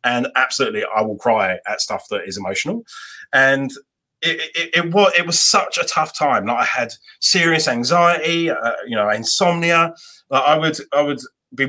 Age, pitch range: 30-49, 135-175 Hz